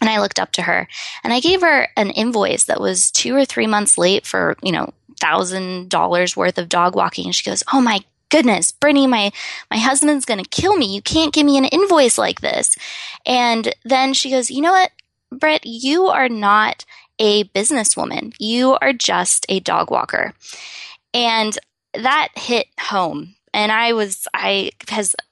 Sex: female